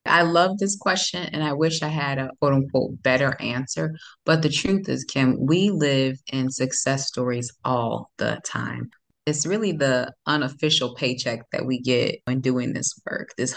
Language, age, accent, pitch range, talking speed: English, 30-49, American, 120-145 Hz, 175 wpm